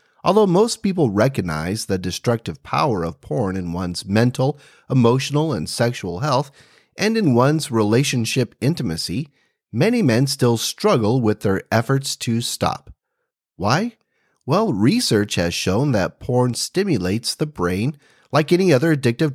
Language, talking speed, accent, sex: English, 135 wpm, American, male